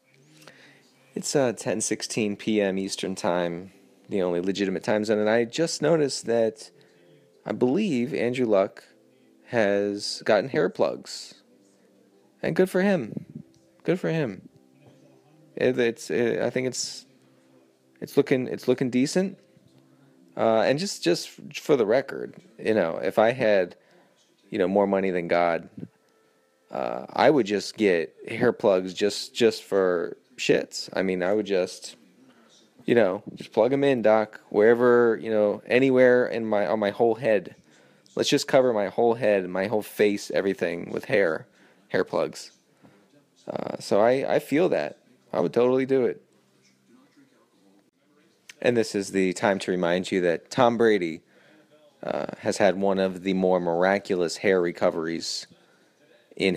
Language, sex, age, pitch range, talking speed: English, male, 30-49, 95-120 Hz, 150 wpm